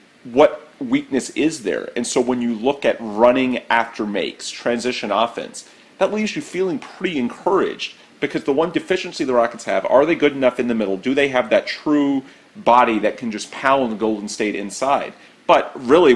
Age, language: 40-59, English